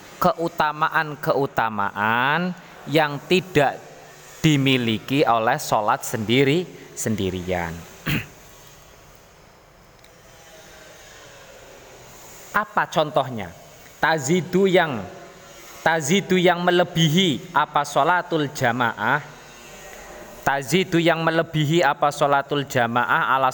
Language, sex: Indonesian, male